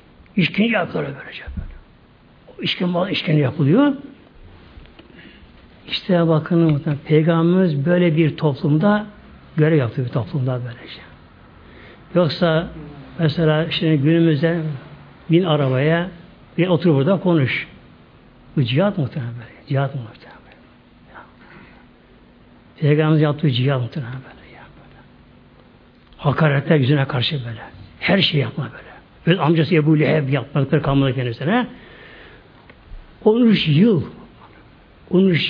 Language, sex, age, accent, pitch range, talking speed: Turkish, male, 60-79, native, 135-190 Hz, 100 wpm